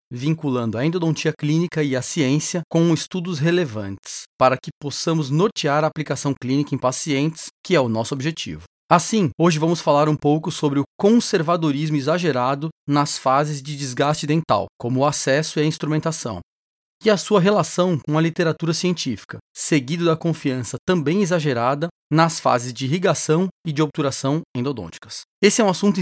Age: 30-49